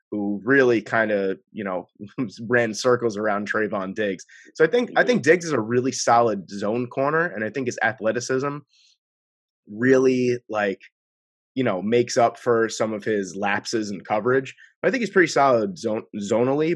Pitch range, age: 100-125 Hz, 30-49